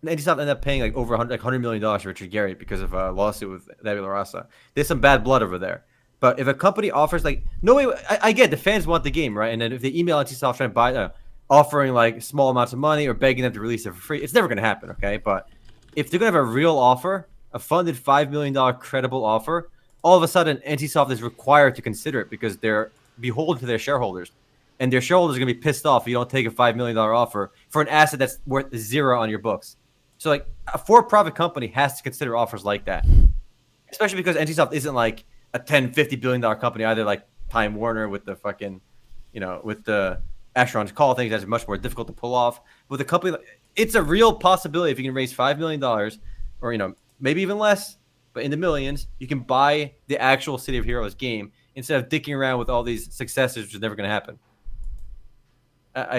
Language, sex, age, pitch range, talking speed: English, male, 20-39, 115-145 Hz, 240 wpm